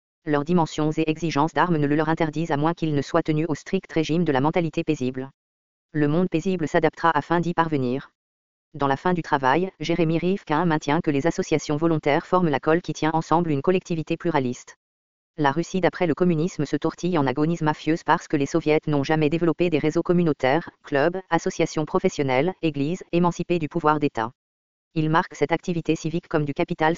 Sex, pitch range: female, 145-170 Hz